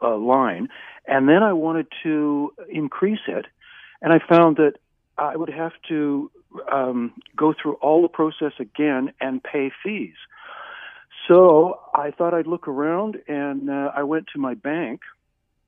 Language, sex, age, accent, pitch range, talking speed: English, male, 60-79, American, 130-165 Hz, 155 wpm